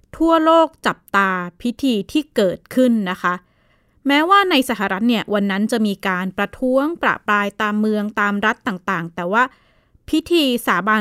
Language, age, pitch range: Thai, 20-39, 195-250 Hz